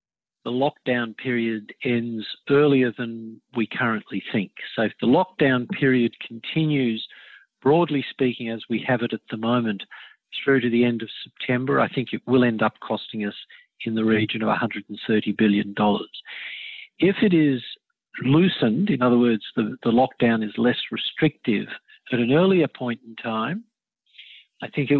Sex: male